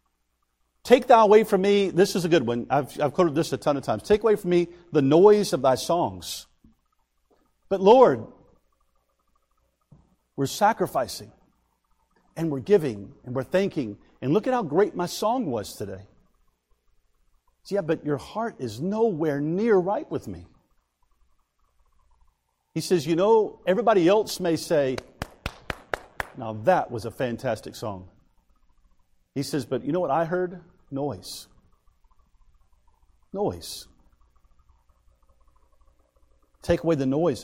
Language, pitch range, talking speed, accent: English, 105-175 Hz, 135 wpm, American